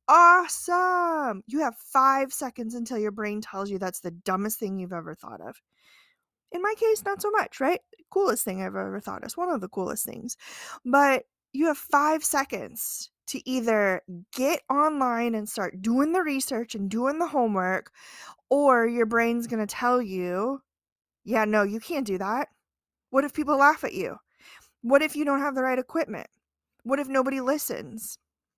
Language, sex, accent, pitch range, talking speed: English, female, American, 220-295 Hz, 180 wpm